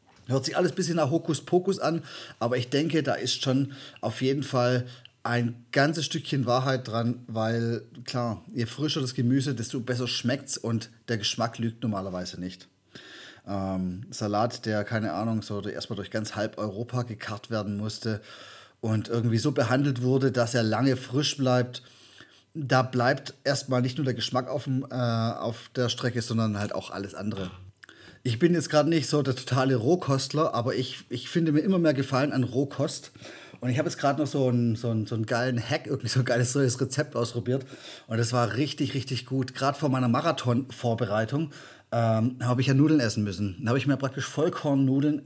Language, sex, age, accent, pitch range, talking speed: German, male, 30-49, German, 115-140 Hz, 190 wpm